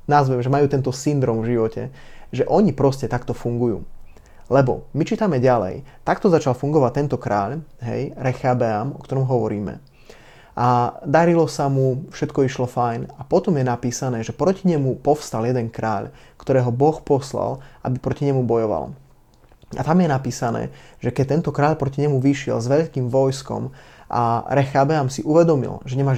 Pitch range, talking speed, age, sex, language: 125-145 Hz, 160 wpm, 20-39, male, Slovak